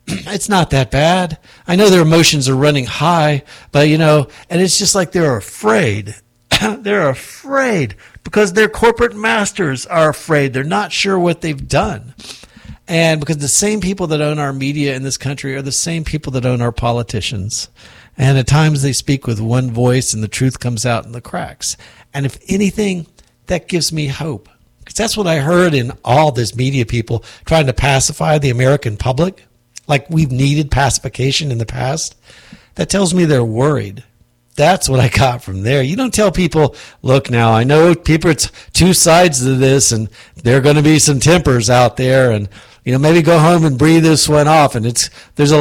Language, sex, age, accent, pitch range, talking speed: English, male, 50-69, American, 125-165 Hz, 195 wpm